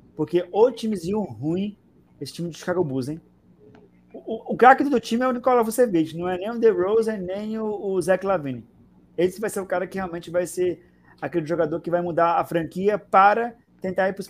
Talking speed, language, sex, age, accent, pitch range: 220 wpm, Portuguese, male, 20-39, Brazilian, 155-190 Hz